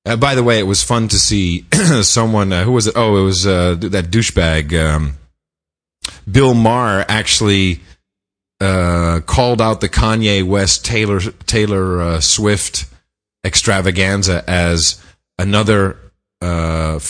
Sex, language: male, English